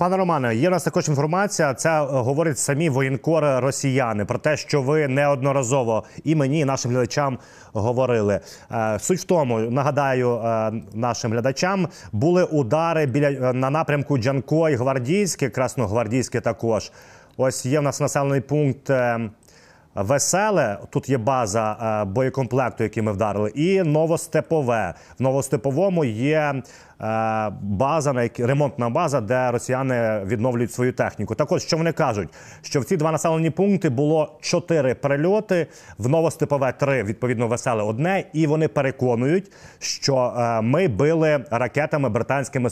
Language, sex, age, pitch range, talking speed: Ukrainian, male, 30-49, 120-150 Hz, 130 wpm